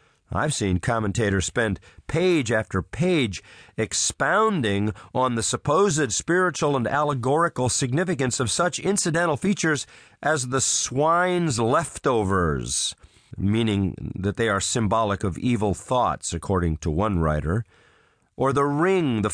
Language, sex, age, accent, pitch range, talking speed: English, male, 40-59, American, 100-150 Hz, 120 wpm